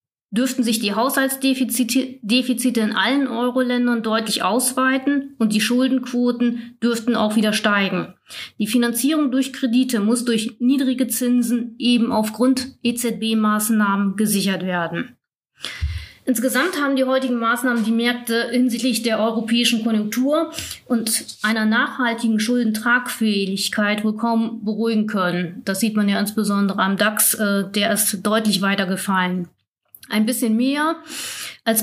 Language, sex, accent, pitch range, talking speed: German, female, German, 210-245 Hz, 120 wpm